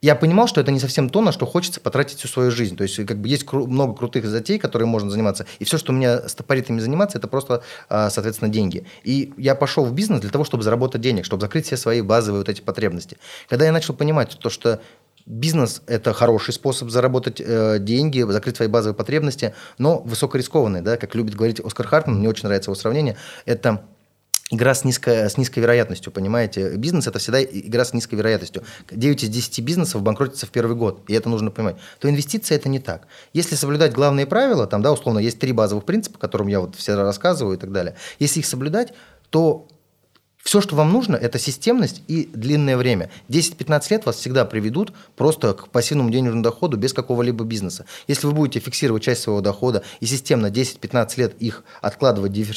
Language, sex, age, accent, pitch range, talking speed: Russian, male, 30-49, native, 110-145 Hz, 195 wpm